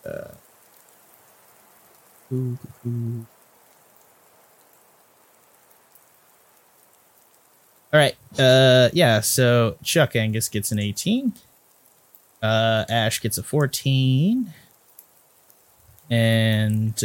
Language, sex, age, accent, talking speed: English, male, 30-49, American, 65 wpm